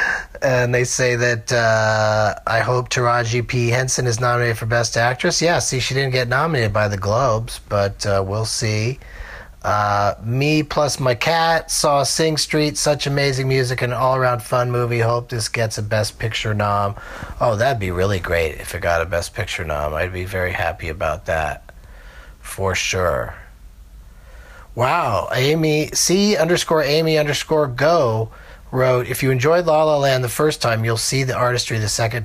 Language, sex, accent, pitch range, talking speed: English, male, American, 100-130 Hz, 170 wpm